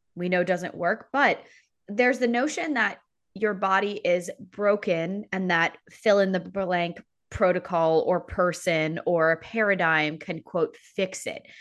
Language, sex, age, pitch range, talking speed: English, female, 20-39, 170-210 Hz, 150 wpm